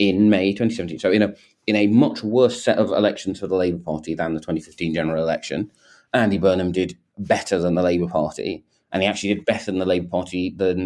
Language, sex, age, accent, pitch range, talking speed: English, male, 30-49, British, 80-105 Hz, 220 wpm